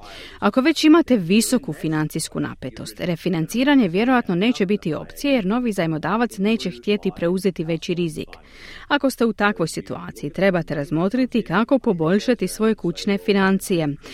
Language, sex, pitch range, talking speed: Croatian, female, 165-240 Hz, 130 wpm